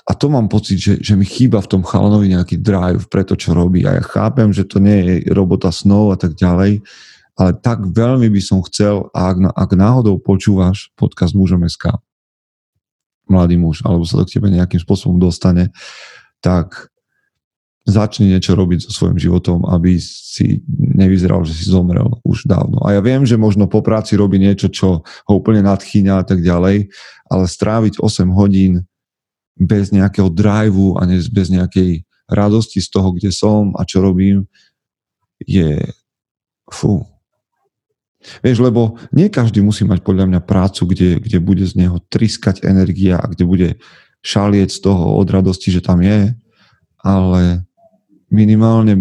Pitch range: 90-105 Hz